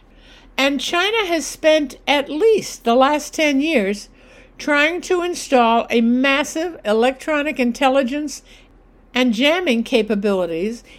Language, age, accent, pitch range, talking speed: English, 60-79, American, 235-305 Hz, 110 wpm